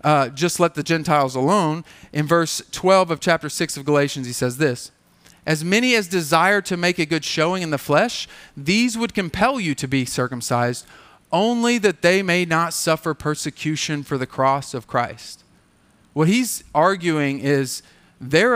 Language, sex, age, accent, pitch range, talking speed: English, male, 40-59, American, 145-185 Hz, 170 wpm